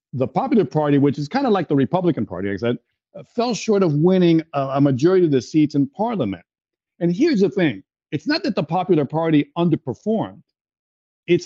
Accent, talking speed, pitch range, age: American, 200 wpm, 120-165 Hz, 50-69